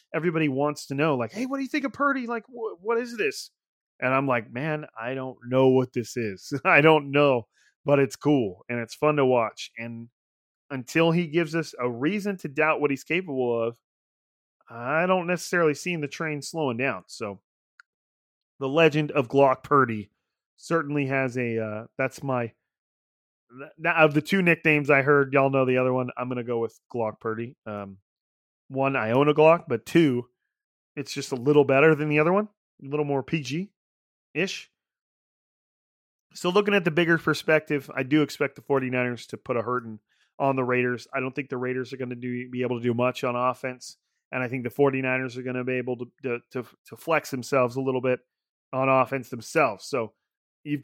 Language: English